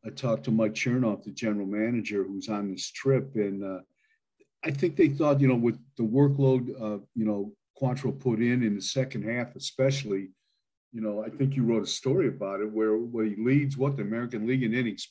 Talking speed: 220 wpm